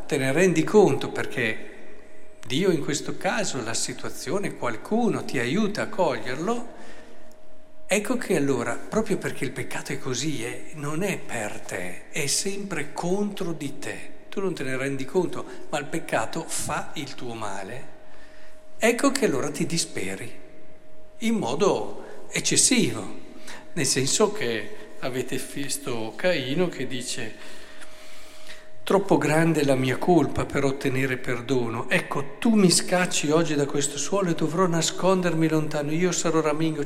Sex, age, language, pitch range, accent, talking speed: male, 50-69, Italian, 135-180 Hz, native, 140 wpm